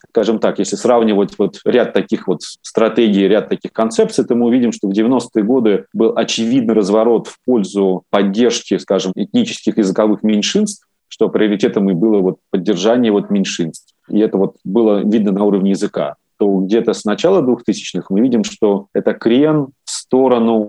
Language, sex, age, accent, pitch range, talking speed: Russian, male, 30-49, native, 95-115 Hz, 155 wpm